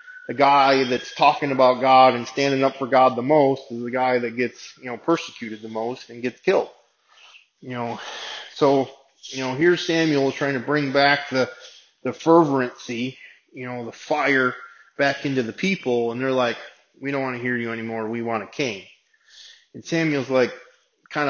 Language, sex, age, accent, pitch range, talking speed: English, male, 20-39, American, 125-150 Hz, 185 wpm